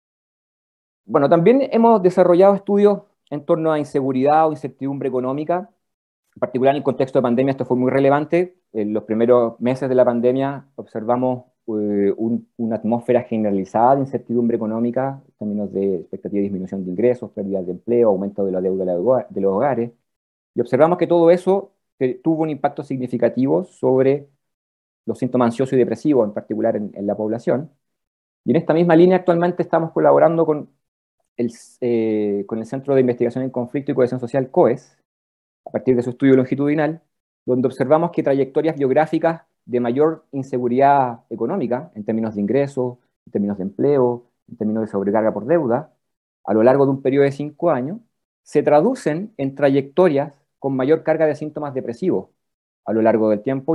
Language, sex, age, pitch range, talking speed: Spanish, male, 30-49, 115-150 Hz, 170 wpm